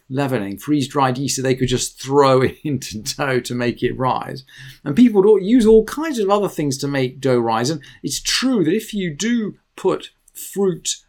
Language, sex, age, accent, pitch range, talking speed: English, male, 40-59, British, 130-185 Hz, 205 wpm